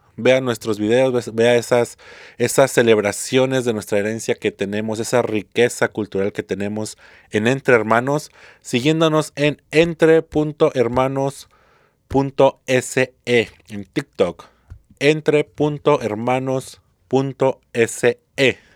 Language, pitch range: Spanish, 105-135 Hz